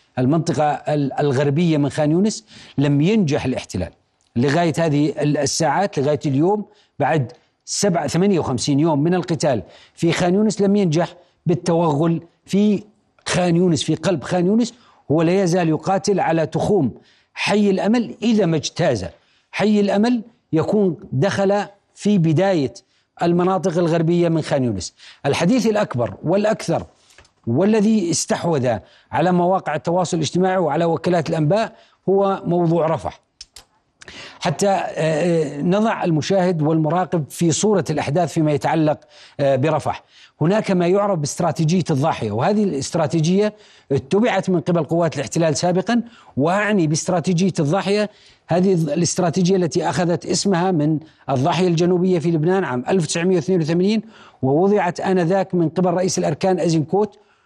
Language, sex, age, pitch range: Arabic, male, 50-69, 155-195 Hz